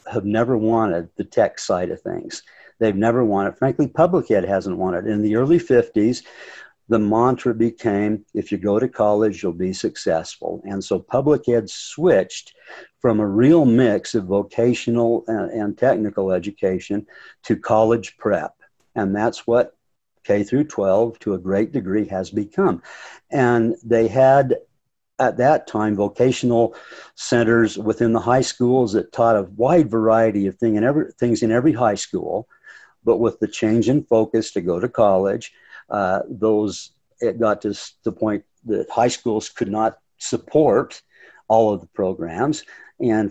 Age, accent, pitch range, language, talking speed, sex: 60-79, American, 100-120 Hz, English, 155 wpm, male